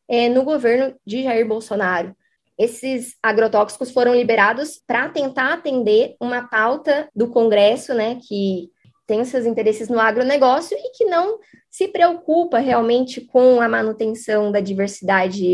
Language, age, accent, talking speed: Portuguese, 20-39, Brazilian, 130 wpm